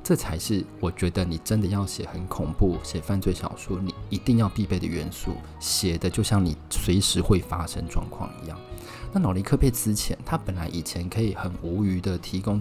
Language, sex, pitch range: Chinese, male, 85-105 Hz